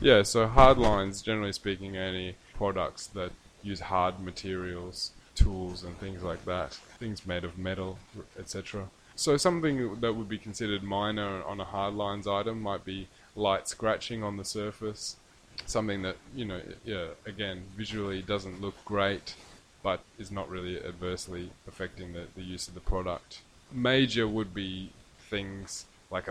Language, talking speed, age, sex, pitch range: English, 155 wpm, 20-39, male, 90-105 Hz